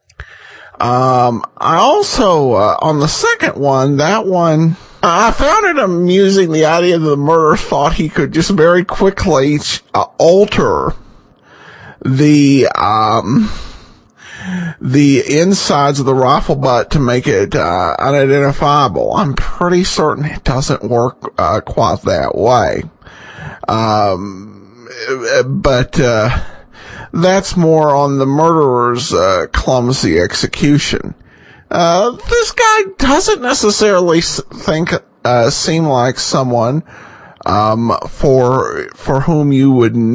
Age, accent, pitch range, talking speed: 50-69, American, 130-190 Hz, 115 wpm